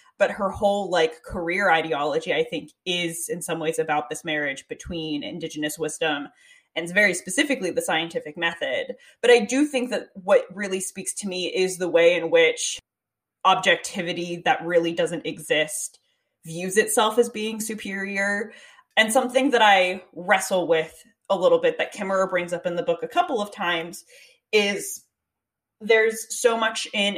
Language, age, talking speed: English, 20-39, 165 wpm